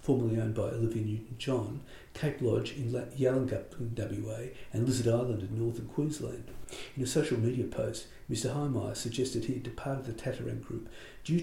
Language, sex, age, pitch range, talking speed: English, male, 50-69, 115-130 Hz, 170 wpm